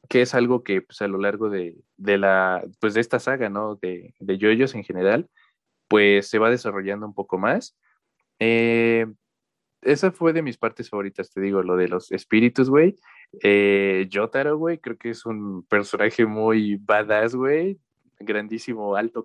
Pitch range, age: 100-120 Hz, 20-39